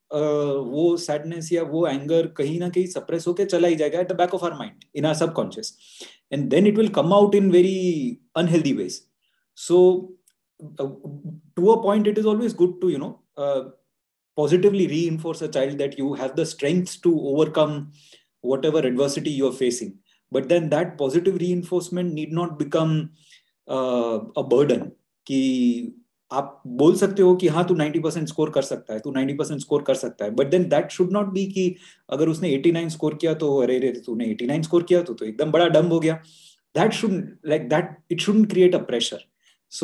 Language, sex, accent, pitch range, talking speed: Hindi, male, native, 145-180 Hz, 100 wpm